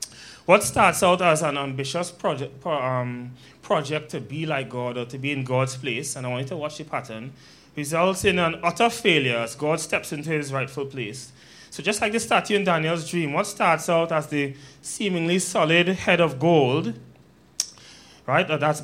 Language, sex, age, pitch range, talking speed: English, male, 20-39, 140-185 Hz, 185 wpm